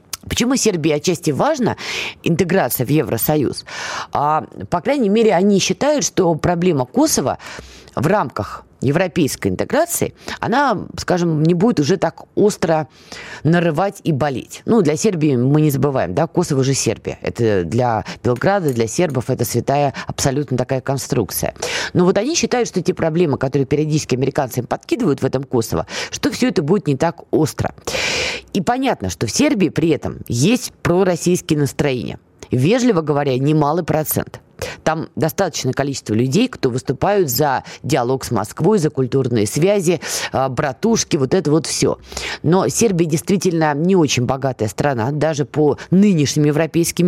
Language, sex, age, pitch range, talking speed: Russian, female, 20-39, 140-190 Hz, 145 wpm